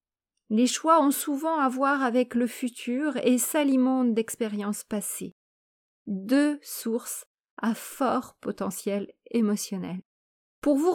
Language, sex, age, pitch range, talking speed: French, female, 30-49, 220-275 Hz, 115 wpm